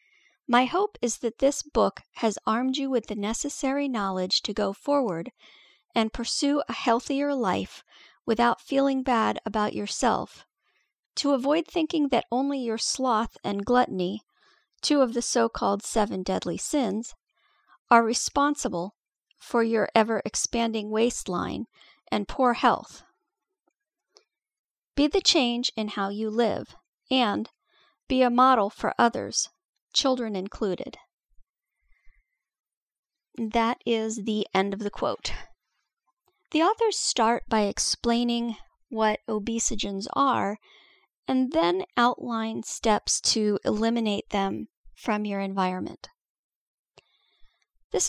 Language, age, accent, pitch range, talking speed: English, 40-59, American, 215-275 Hz, 115 wpm